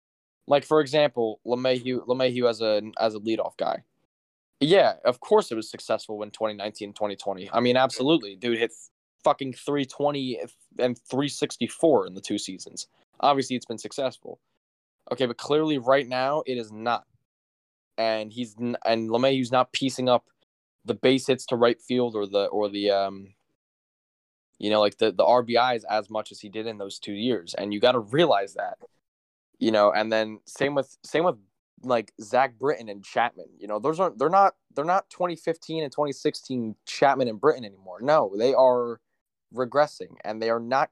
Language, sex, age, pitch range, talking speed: English, male, 10-29, 110-150 Hz, 180 wpm